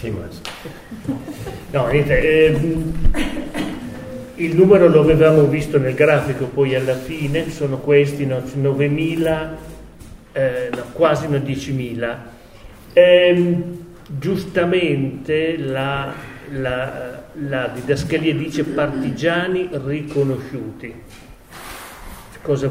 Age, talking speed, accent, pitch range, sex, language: 40-59, 65 wpm, Italian, 130-170 Hz, male, German